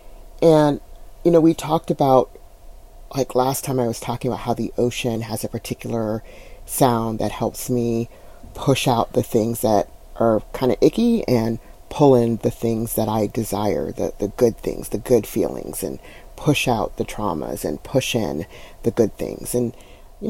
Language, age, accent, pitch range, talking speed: English, 40-59, American, 115-140 Hz, 175 wpm